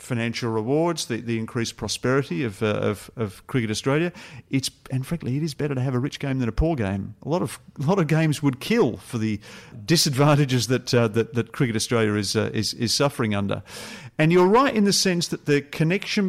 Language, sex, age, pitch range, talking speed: English, male, 50-69, 105-130 Hz, 220 wpm